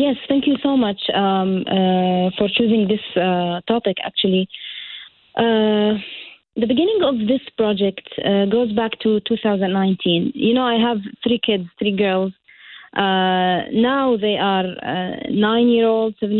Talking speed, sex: 150 wpm, female